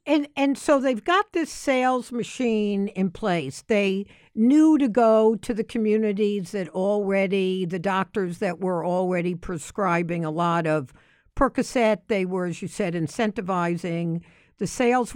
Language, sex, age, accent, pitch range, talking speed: English, female, 60-79, American, 180-230 Hz, 145 wpm